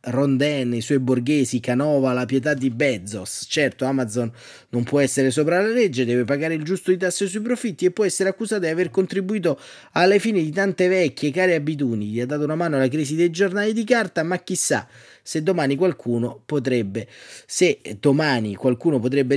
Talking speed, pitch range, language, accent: 190 wpm, 125-160 Hz, Italian, native